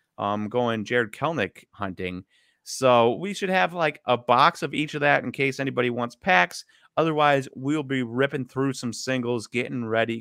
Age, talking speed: 30-49, 175 wpm